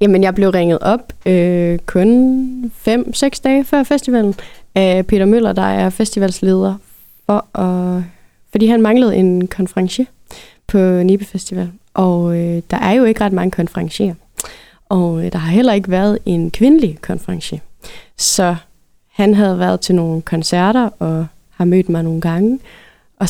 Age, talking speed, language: 20-39, 155 wpm, Danish